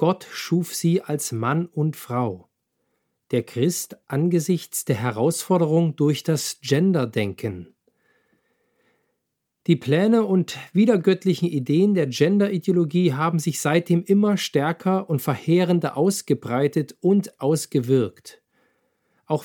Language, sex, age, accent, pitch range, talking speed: German, male, 40-59, German, 135-180 Hz, 100 wpm